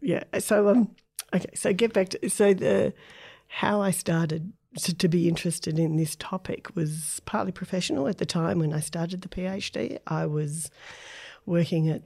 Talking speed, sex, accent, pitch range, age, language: 175 wpm, female, Australian, 155-190 Hz, 40-59, English